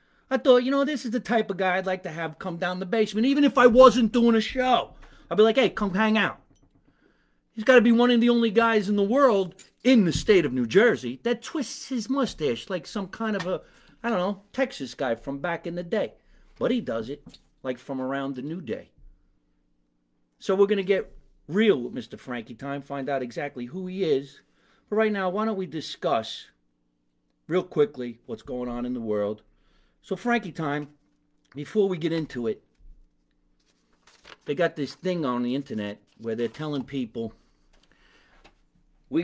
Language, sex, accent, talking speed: English, male, American, 200 wpm